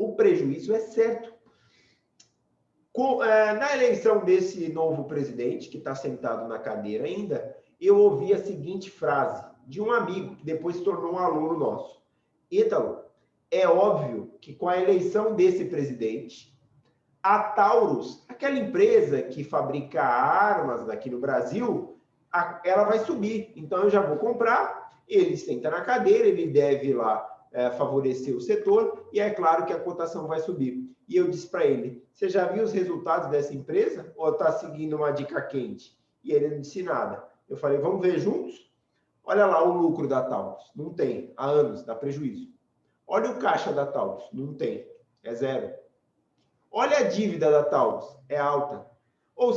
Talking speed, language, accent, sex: 165 wpm, Portuguese, Brazilian, male